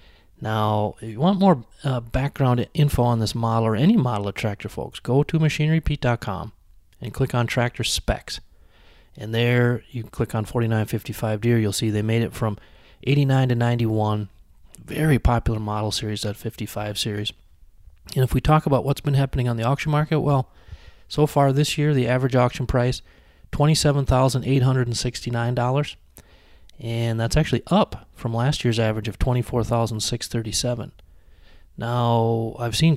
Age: 30-49